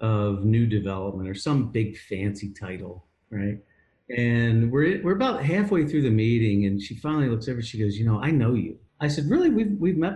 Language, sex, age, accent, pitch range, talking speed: English, male, 50-69, American, 120-170 Hz, 215 wpm